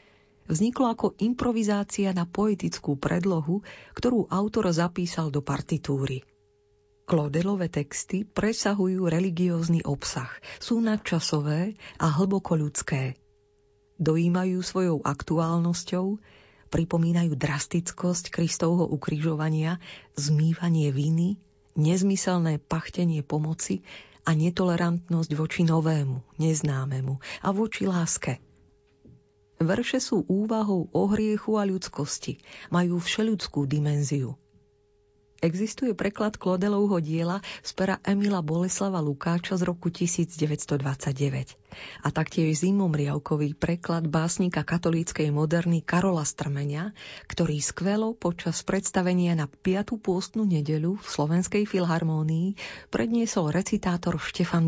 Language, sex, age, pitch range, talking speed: Slovak, female, 40-59, 150-190 Hz, 95 wpm